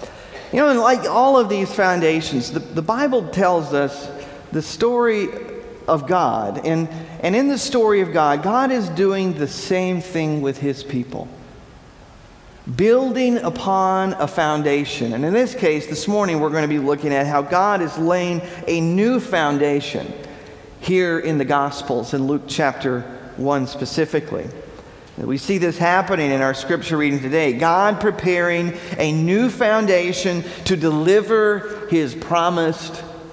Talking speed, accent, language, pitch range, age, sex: 145 wpm, American, English, 145-190 Hz, 50-69, male